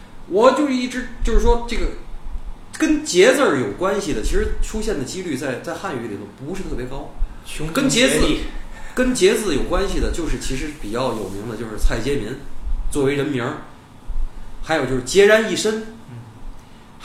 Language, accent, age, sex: Chinese, native, 20-39, male